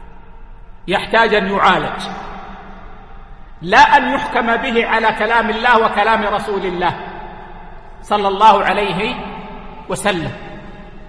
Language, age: Arabic, 50-69